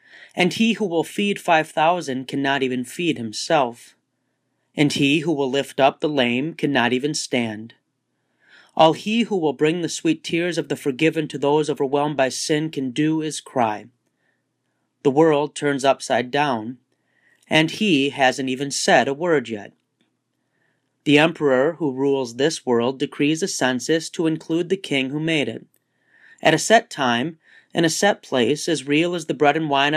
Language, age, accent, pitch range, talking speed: English, 40-59, American, 130-160 Hz, 170 wpm